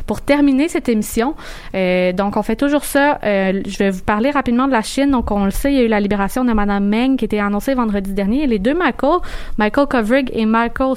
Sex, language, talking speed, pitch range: female, French, 245 wpm, 210-260 Hz